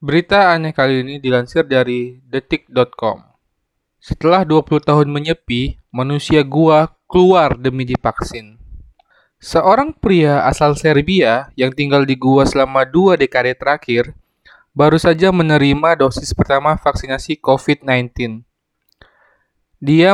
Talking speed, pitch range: 105 wpm, 135-160 Hz